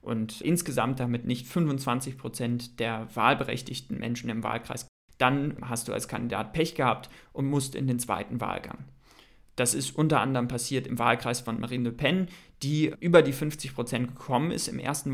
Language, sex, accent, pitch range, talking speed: German, male, German, 115-140 Hz, 165 wpm